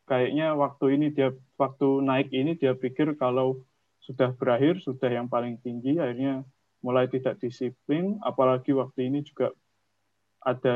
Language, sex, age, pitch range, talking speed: Indonesian, male, 20-39, 125-145 Hz, 140 wpm